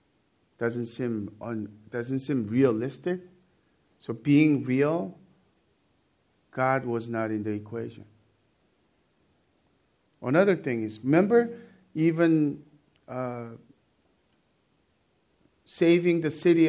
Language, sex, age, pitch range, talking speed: English, male, 50-69, 115-160 Hz, 85 wpm